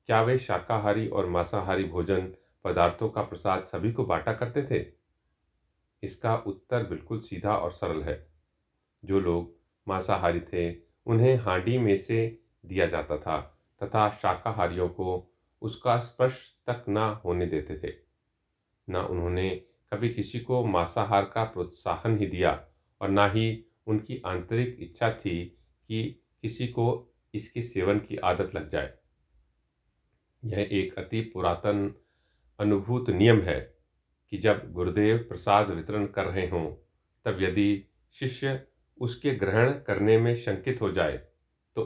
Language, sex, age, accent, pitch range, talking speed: Hindi, male, 40-59, native, 90-115 Hz, 135 wpm